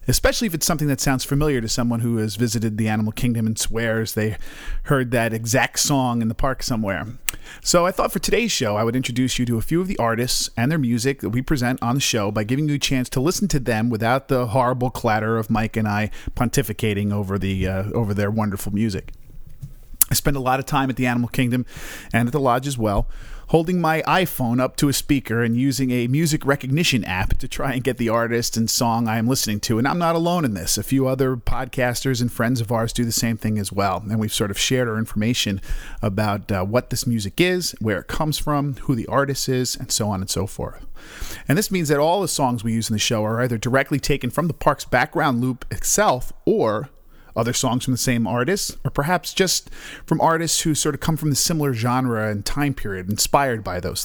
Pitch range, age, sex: 110-145 Hz, 40-59, male